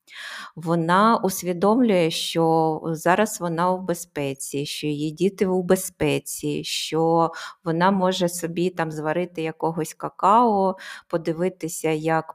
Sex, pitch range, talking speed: female, 160-190 Hz, 105 wpm